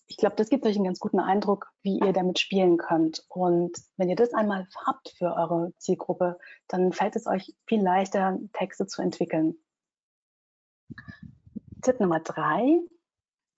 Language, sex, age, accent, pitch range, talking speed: German, female, 30-49, German, 175-215 Hz, 155 wpm